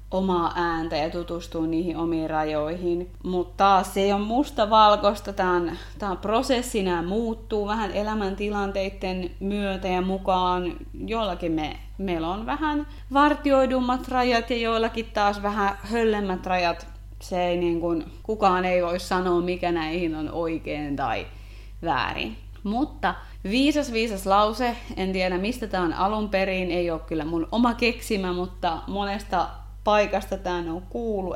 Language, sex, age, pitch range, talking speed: Finnish, female, 30-49, 175-220 Hz, 140 wpm